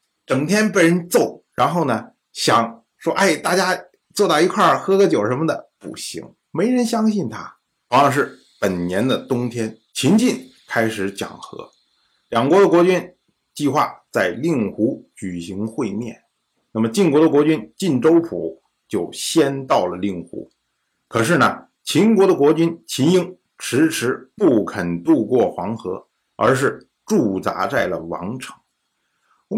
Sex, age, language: male, 50-69, Chinese